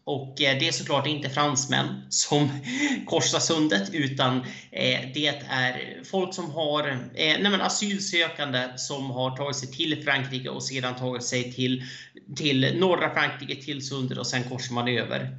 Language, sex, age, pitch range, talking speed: Swedish, male, 30-49, 125-155 Hz, 150 wpm